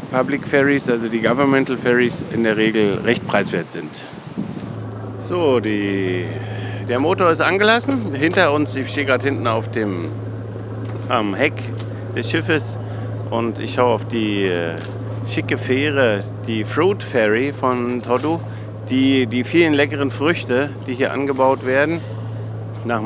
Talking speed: 135 wpm